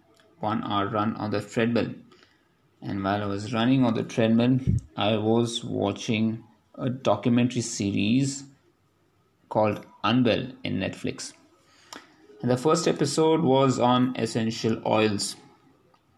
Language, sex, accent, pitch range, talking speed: English, male, Indian, 105-120 Hz, 120 wpm